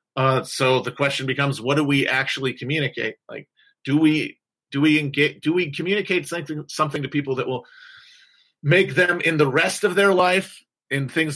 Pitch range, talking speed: 130-155 Hz, 185 wpm